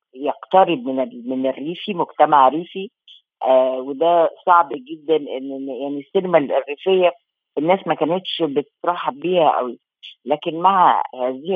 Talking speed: 120 wpm